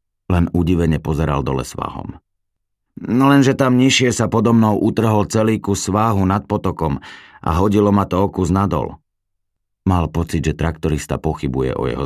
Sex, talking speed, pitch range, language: male, 145 wpm, 80-100 Hz, Slovak